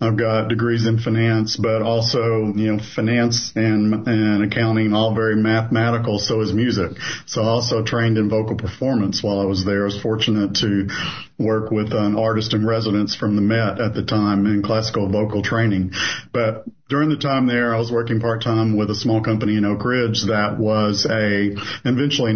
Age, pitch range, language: 50-69, 105-115 Hz, English